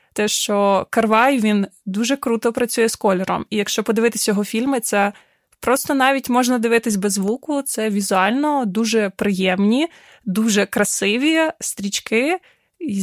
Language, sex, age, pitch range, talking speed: Ukrainian, female, 20-39, 215-280 Hz, 130 wpm